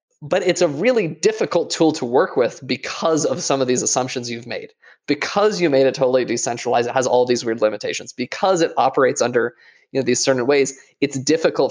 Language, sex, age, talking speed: English, male, 20-39, 195 wpm